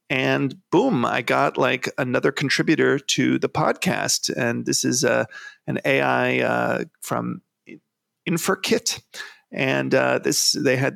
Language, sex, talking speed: English, male, 130 wpm